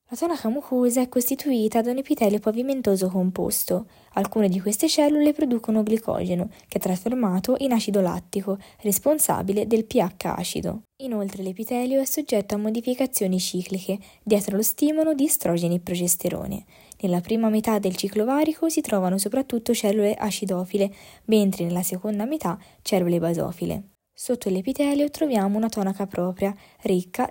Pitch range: 190-245 Hz